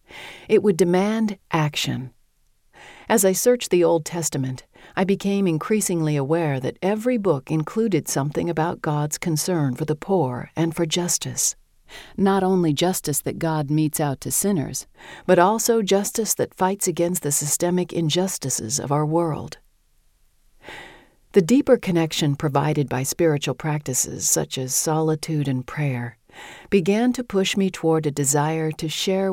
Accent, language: American, English